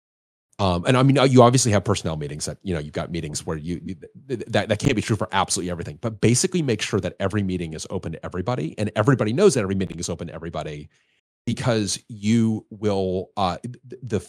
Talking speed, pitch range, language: 220 wpm, 90-120 Hz, English